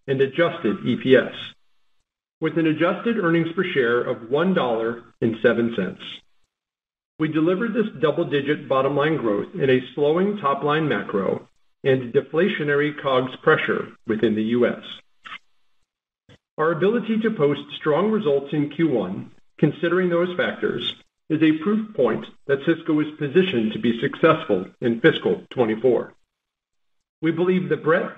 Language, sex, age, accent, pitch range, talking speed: English, male, 50-69, American, 140-180 Hz, 125 wpm